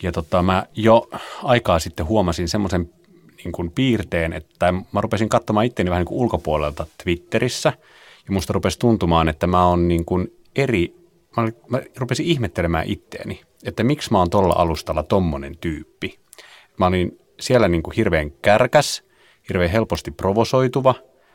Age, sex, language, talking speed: 30-49, male, Finnish, 140 wpm